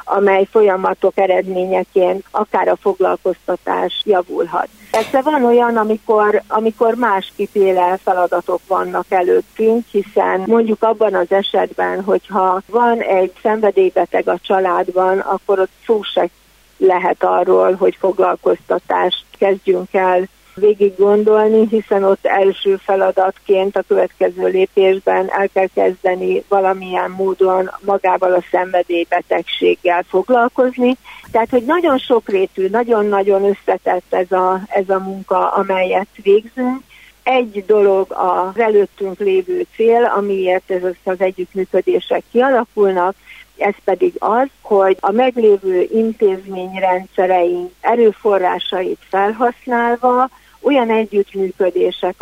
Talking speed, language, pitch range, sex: 105 wpm, Hungarian, 185-220 Hz, female